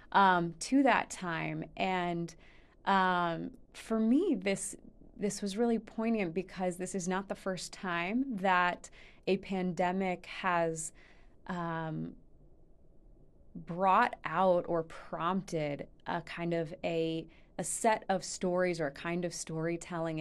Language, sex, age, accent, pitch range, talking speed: English, female, 20-39, American, 160-185 Hz, 125 wpm